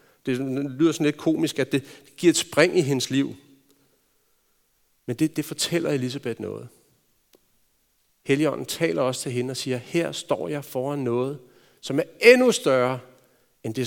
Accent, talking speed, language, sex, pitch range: native, 160 wpm, Danish, male, 130-170 Hz